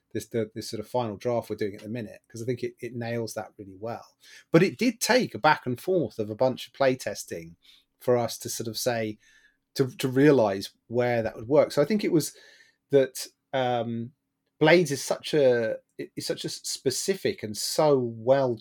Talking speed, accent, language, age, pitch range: 215 wpm, British, English, 30-49, 110-135 Hz